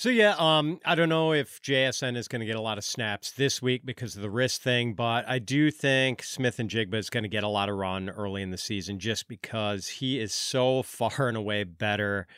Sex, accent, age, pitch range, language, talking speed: male, American, 40-59, 105-135 Hz, English, 245 wpm